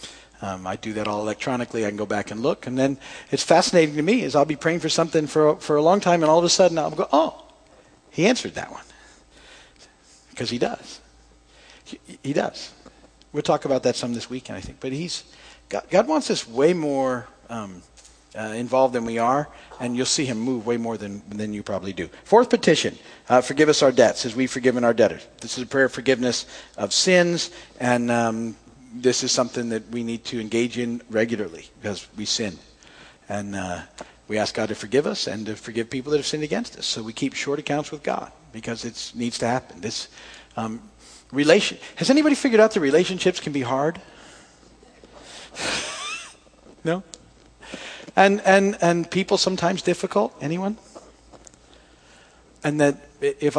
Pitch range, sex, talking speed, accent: 115-165 Hz, male, 190 wpm, American